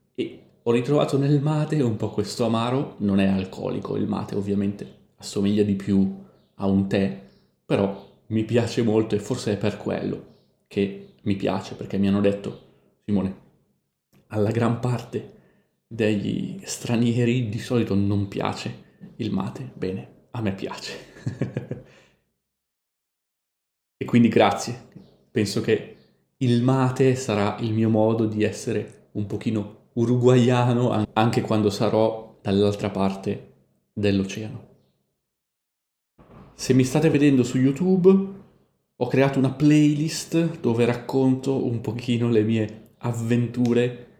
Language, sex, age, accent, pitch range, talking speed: Italian, male, 30-49, native, 105-125 Hz, 125 wpm